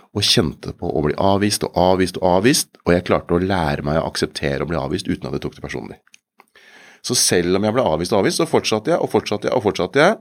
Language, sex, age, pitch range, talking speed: English, male, 30-49, 80-105 Hz, 240 wpm